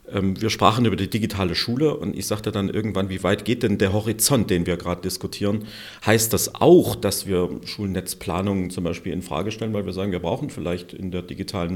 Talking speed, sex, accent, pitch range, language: 210 wpm, male, German, 95-125 Hz, German